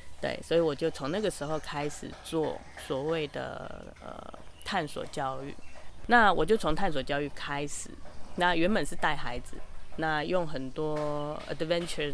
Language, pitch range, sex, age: Chinese, 130-175 Hz, female, 20-39